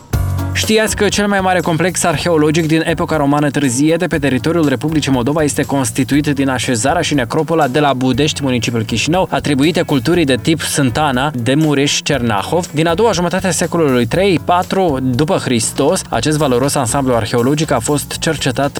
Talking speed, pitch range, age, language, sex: 155 wpm, 120-160 Hz, 20-39, Romanian, male